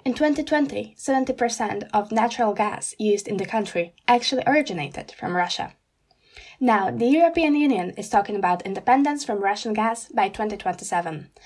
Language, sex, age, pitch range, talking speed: Slovak, female, 10-29, 210-265 Hz, 140 wpm